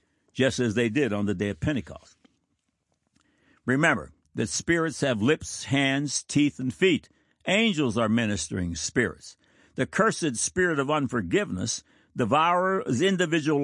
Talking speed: 130 wpm